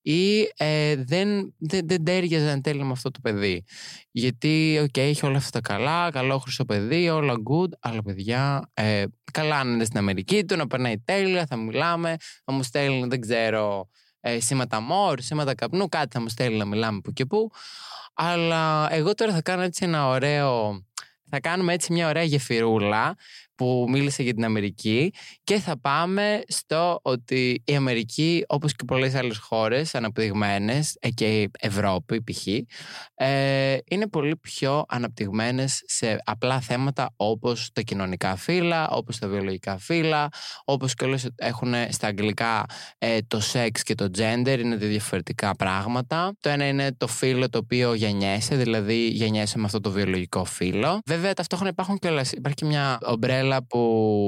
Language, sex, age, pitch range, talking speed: Greek, male, 20-39, 110-150 Hz, 155 wpm